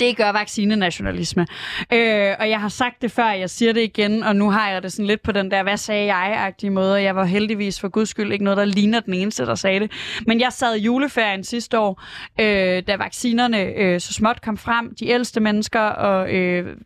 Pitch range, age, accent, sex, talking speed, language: 195-230 Hz, 20-39, native, female, 225 wpm, Danish